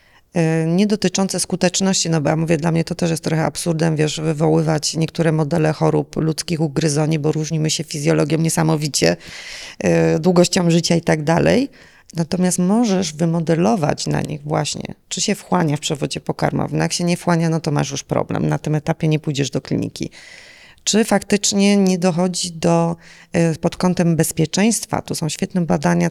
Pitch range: 155-180 Hz